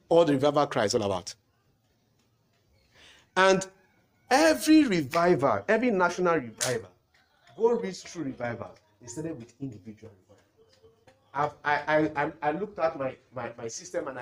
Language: English